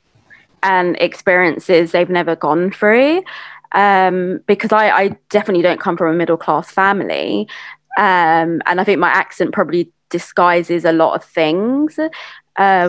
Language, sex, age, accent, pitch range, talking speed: English, female, 20-39, British, 165-200 Hz, 140 wpm